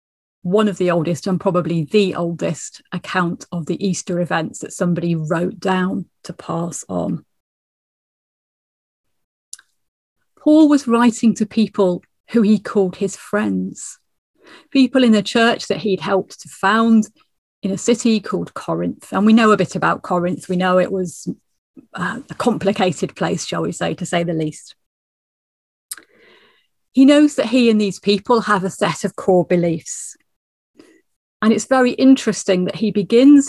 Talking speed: 150 wpm